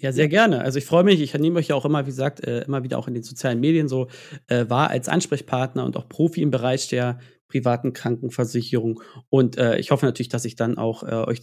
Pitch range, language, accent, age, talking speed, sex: 125-150 Hz, German, German, 40-59, 225 wpm, male